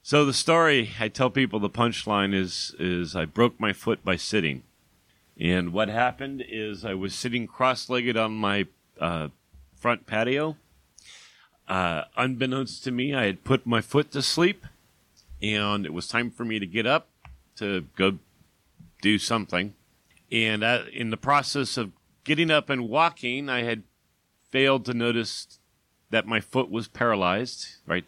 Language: English